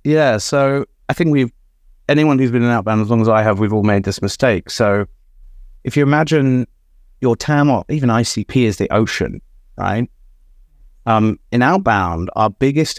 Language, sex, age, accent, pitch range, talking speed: English, male, 30-49, British, 95-125 Hz, 175 wpm